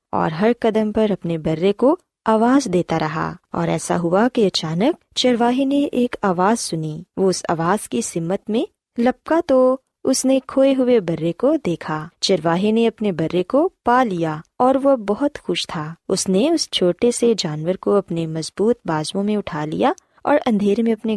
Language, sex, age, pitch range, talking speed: Urdu, female, 20-39, 170-245 Hz, 180 wpm